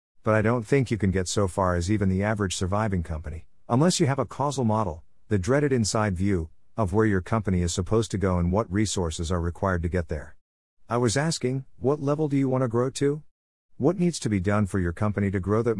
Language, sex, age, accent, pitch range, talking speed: English, male, 50-69, American, 90-120 Hz, 240 wpm